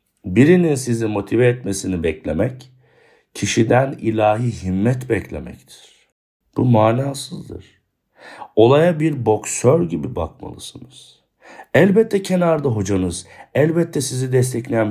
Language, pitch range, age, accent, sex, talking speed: Turkish, 95-130 Hz, 60-79, native, male, 90 wpm